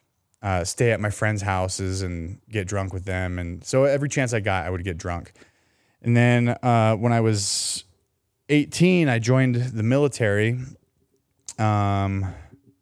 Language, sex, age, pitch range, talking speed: English, male, 30-49, 95-115 Hz, 155 wpm